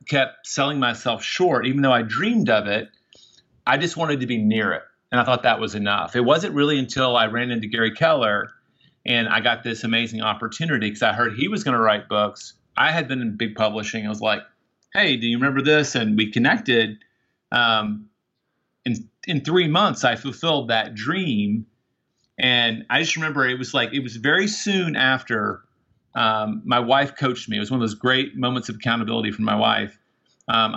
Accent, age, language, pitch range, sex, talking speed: American, 40-59, English, 110-140 Hz, male, 200 wpm